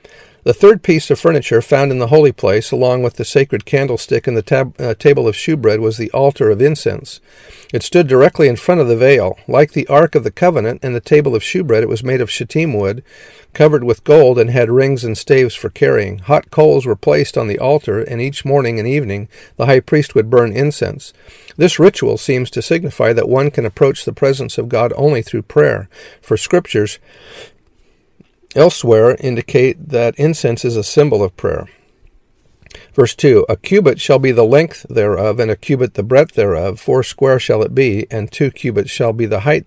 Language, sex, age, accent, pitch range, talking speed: English, male, 50-69, American, 115-145 Hz, 205 wpm